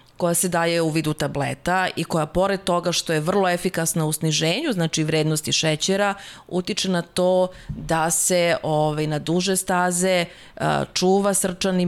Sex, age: female, 30-49